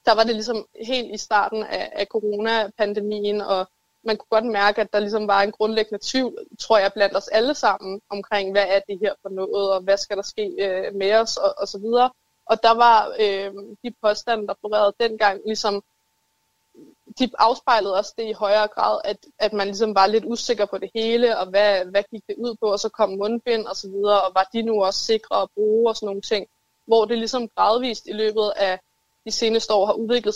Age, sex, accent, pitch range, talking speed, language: 20-39, female, native, 200-225 Hz, 215 wpm, Danish